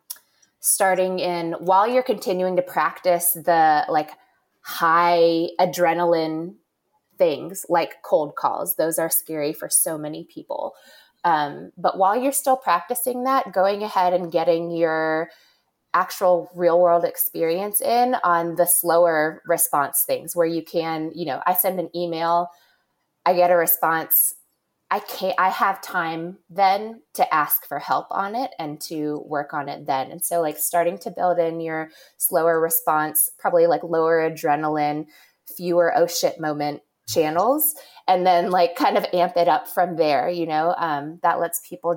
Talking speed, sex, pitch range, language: 155 wpm, female, 165-185 Hz, English